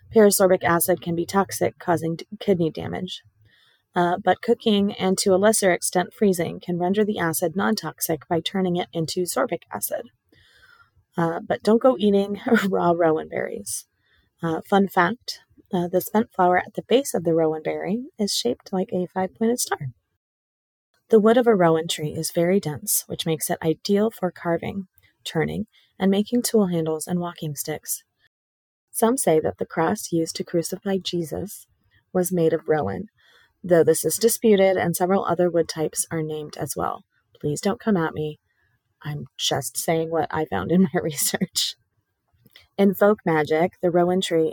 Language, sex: English, female